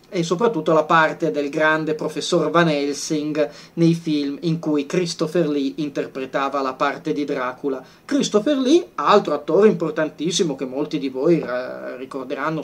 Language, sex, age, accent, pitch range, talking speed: Italian, male, 30-49, native, 140-165 Hz, 145 wpm